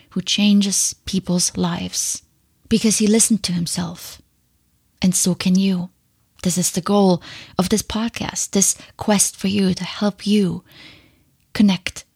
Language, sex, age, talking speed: English, female, 20-39, 140 wpm